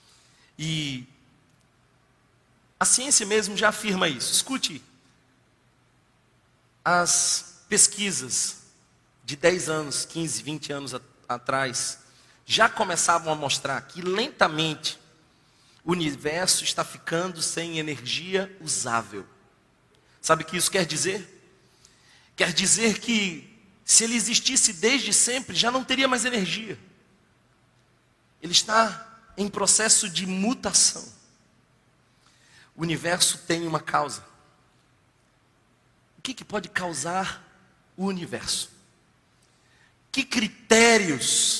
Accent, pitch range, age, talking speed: Brazilian, 145-205 Hz, 40-59, 100 wpm